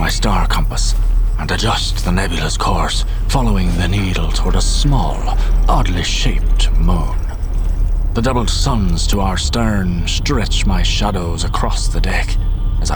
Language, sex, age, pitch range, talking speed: English, male, 30-49, 85-105 Hz, 140 wpm